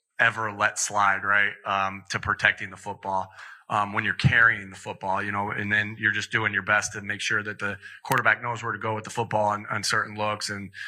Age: 30-49